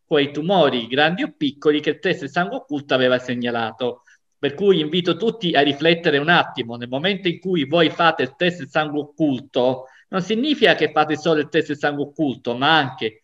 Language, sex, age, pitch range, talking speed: Italian, male, 50-69, 145-195 Hz, 200 wpm